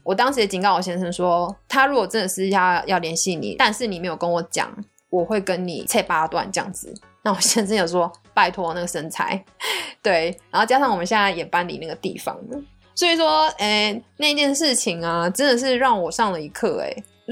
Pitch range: 180-235 Hz